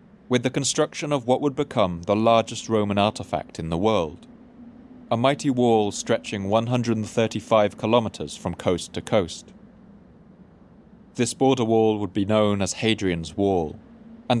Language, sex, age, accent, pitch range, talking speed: English, male, 30-49, British, 100-145 Hz, 140 wpm